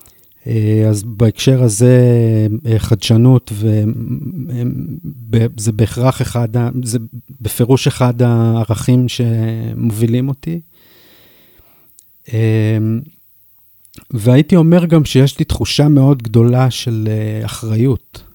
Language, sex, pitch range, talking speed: Hebrew, male, 115-130 Hz, 75 wpm